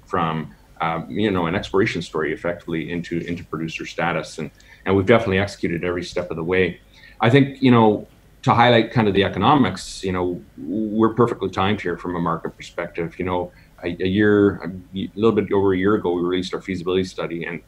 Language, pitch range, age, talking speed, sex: English, 85-105 Hz, 40-59, 205 wpm, male